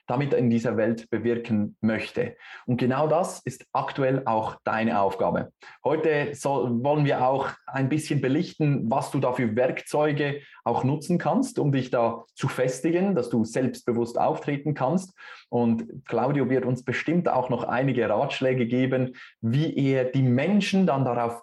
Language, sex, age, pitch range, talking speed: German, male, 20-39, 120-145 Hz, 155 wpm